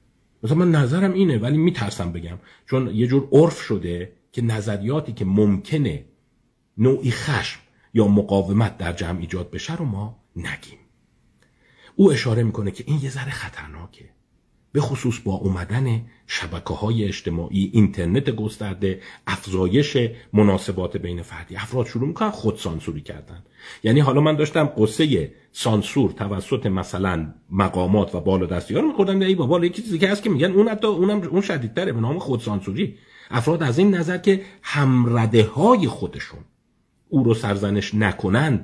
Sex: male